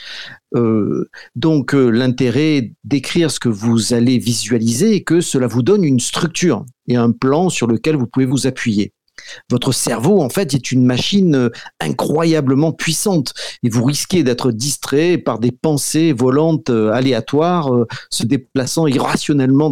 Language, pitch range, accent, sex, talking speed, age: French, 120-155 Hz, French, male, 155 wpm, 50-69